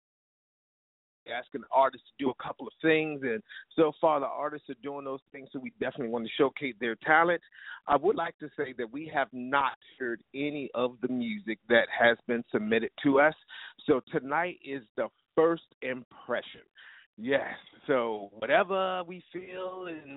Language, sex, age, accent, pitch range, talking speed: English, male, 40-59, American, 130-170 Hz, 175 wpm